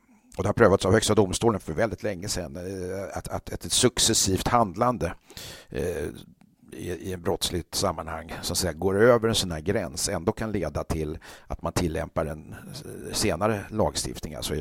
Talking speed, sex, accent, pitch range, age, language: 155 wpm, male, native, 85-110 Hz, 60-79, Swedish